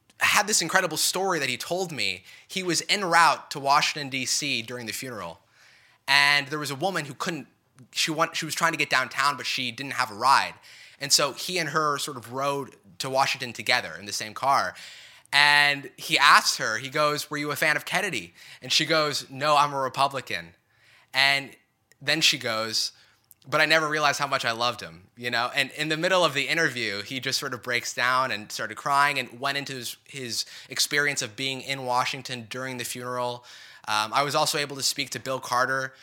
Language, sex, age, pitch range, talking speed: English, male, 20-39, 120-150 Hz, 210 wpm